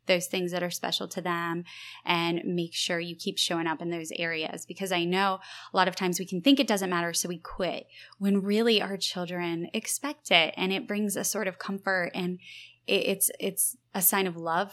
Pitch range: 175-210 Hz